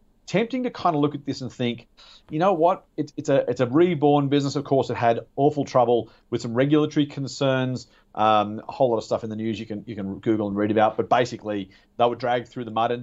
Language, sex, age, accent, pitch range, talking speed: English, male, 40-59, Australian, 115-145 Hz, 255 wpm